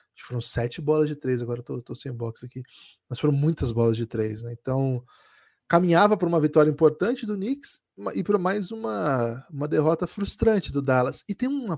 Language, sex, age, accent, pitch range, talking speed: Portuguese, male, 20-39, Brazilian, 130-185 Hz, 190 wpm